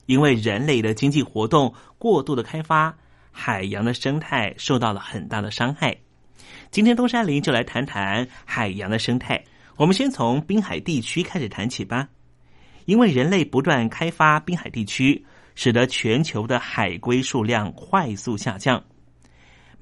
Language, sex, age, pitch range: Chinese, male, 30-49, 115-170 Hz